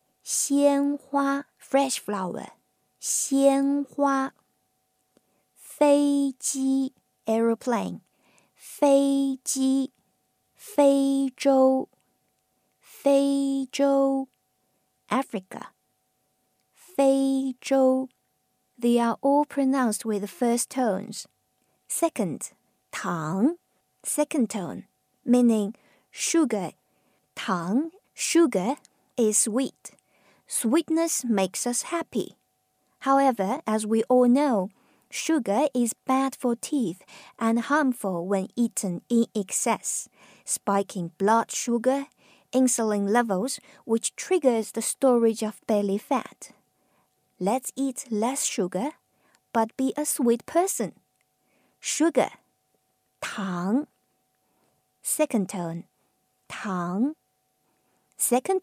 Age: 50-69